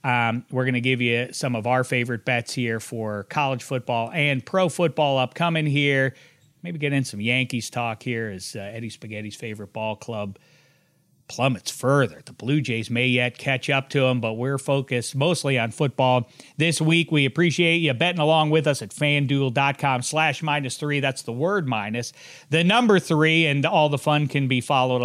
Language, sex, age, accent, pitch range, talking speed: English, male, 40-59, American, 120-150 Hz, 190 wpm